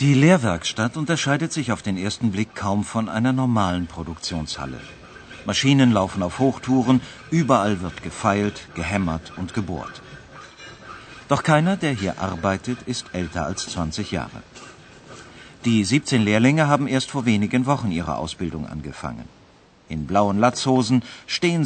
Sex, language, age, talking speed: male, Urdu, 50-69, 135 wpm